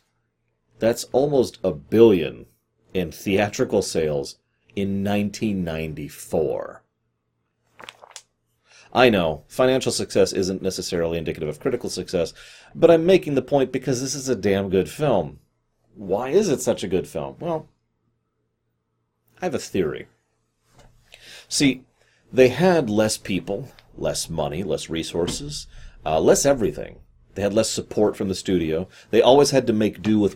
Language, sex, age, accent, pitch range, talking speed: English, male, 40-59, American, 95-130 Hz, 135 wpm